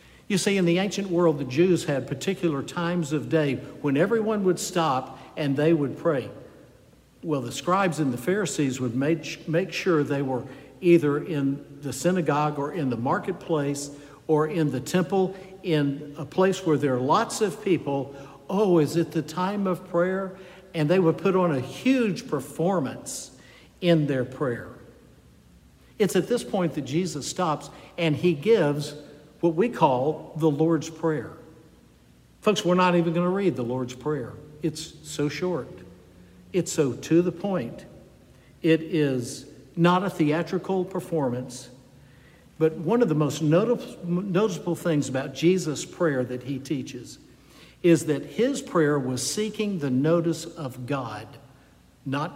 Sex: male